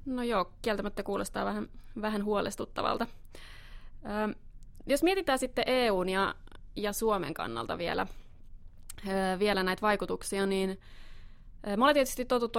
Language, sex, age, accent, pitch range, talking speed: Finnish, female, 20-39, native, 185-220 Hz, 115 wpm